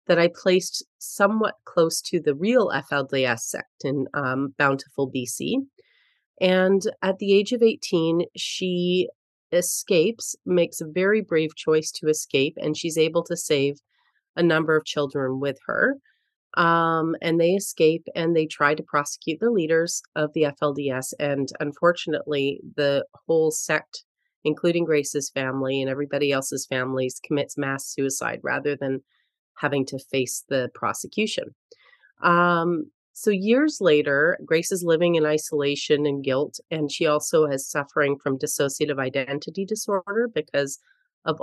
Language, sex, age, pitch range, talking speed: English, female, 30-49, 140-185 Hz, 140 wpm